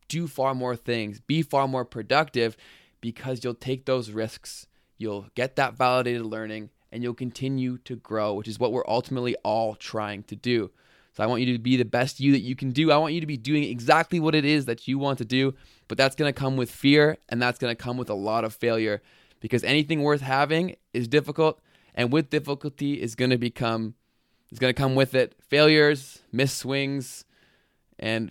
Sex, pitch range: male, 115-140 Hz